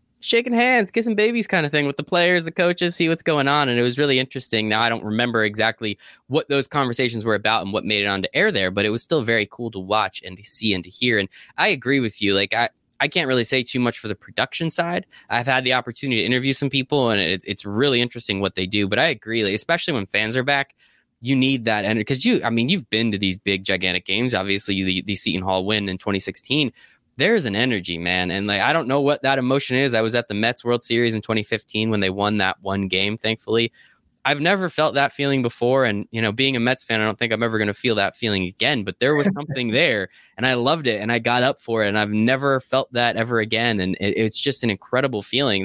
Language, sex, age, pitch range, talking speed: English, male, 20-39, 105-135 Hz, 260 wpm